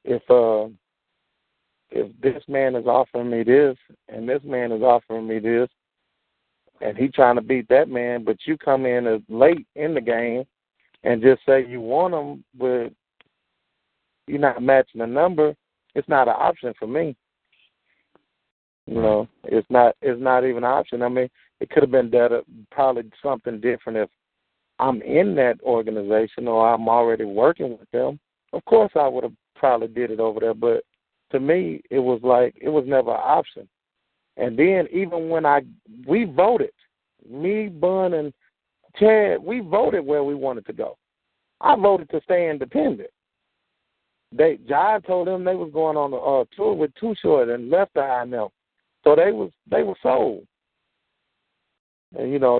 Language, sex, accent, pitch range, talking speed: English, male, American, 120-155 Hz, 170 wpm